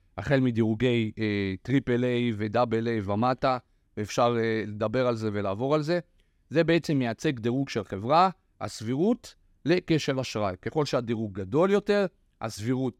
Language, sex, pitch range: Hebrew, male, 115-170 Hz